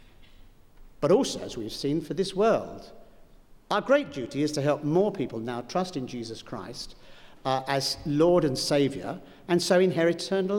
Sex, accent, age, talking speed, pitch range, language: male, British, 60-79, 170 wpm, 135-180 Hz, English